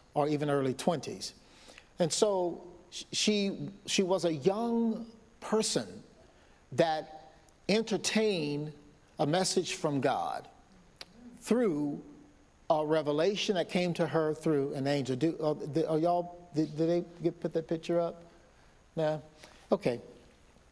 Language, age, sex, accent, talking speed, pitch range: English, 50-69, male, American, 115 wpm, 150-185 Hz